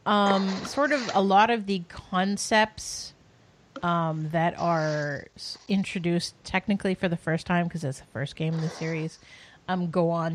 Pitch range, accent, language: 160-195 Hz, American, English